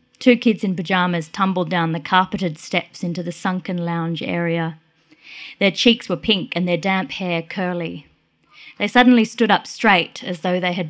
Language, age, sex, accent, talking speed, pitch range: English, 20-39, female, Australian, 175 wpm, 180-270 Hz